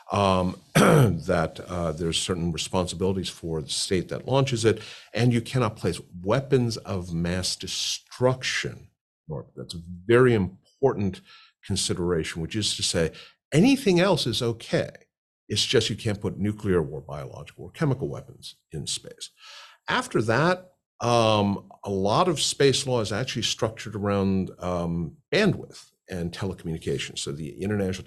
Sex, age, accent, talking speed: male, 50-69, American, 140 wpm